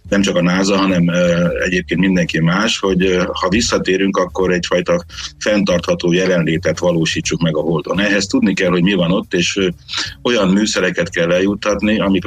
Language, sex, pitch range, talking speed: Hungarian, male, 85-95 Hz, 155 wpm